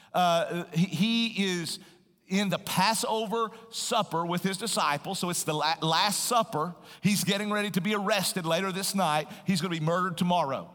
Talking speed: 180 wpm